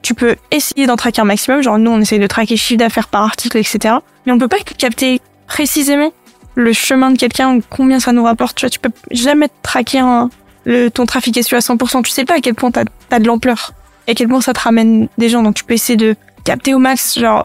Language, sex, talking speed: French, female, 255 wpm